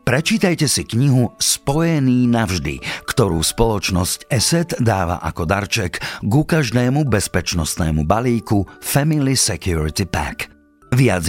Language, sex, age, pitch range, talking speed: Slovak, male, 50-69, 80-115 Hz, 100 wpm